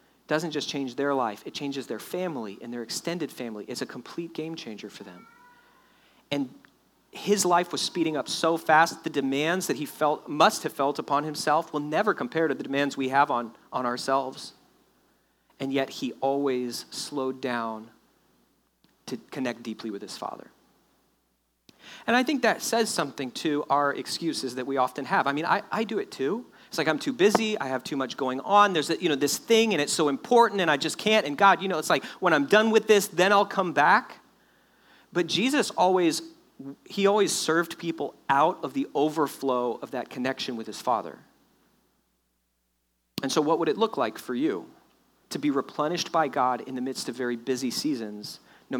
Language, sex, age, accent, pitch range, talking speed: English, male, 40-59, American, 130-185 Hz, 195 wpm